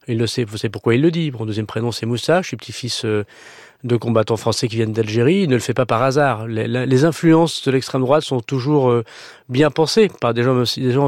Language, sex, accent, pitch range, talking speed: French, male, French, 120-140 Hz, 225 wpm